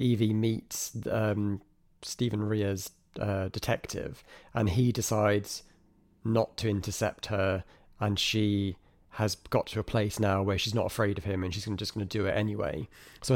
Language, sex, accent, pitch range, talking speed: English, male, British, 105-125 Hz, 170 wpm